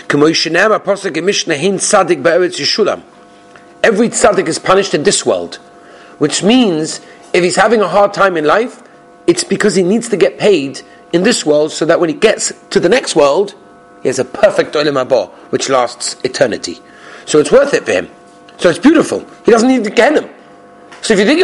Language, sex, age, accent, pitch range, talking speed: English, male, 40-59, British, 150-225 Hz, 175 wpm